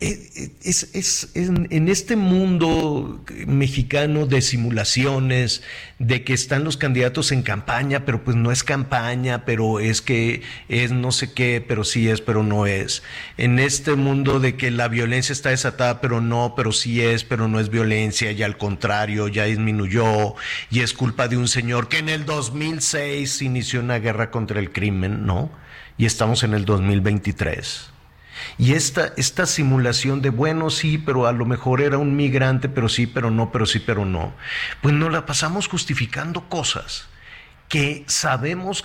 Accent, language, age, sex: Mexican, Spanish, 50-69, male